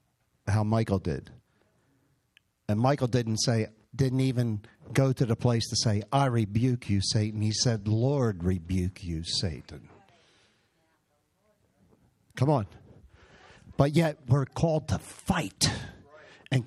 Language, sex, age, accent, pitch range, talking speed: English, male, 50-69, American, 115-175 Hz, 120 wpm